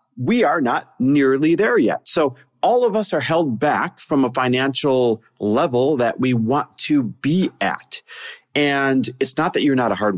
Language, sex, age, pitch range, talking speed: English, male, 30-49, 110-165 Hz, 185 wpm